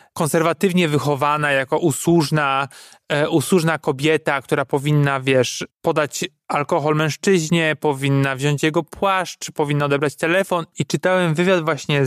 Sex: male